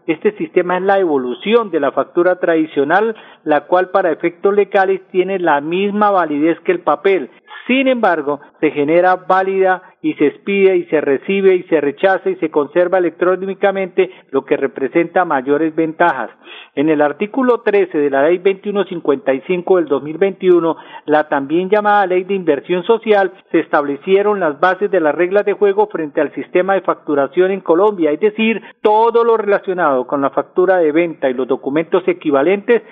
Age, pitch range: 50-69, 160-200 Hz